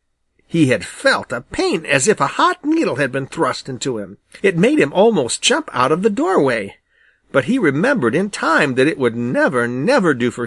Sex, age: male, 50-69